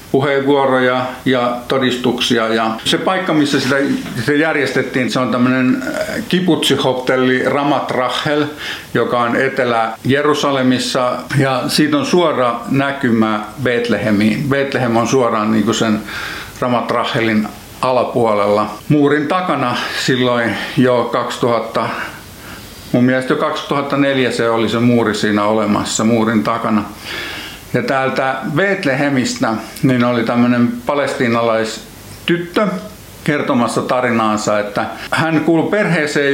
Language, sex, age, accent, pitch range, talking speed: Finnish, male, 50-69, native, 120-145 Hz, 100 wpm